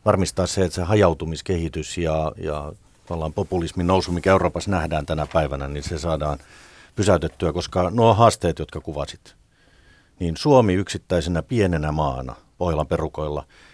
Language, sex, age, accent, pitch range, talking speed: Finnish, male, 50-69, native, 75-90 Hz, 130 wpm